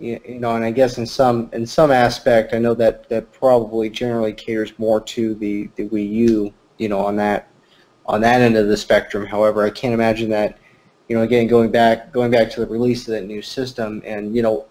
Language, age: English, 30-49